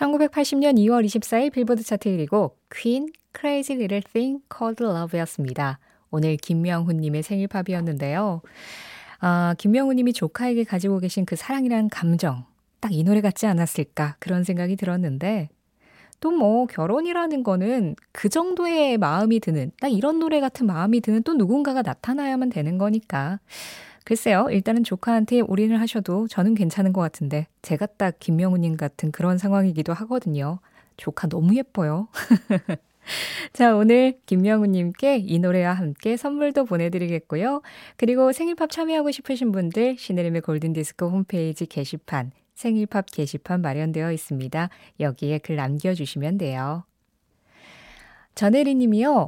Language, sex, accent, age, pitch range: Korean, female, native, 20-39, 170-240 Hz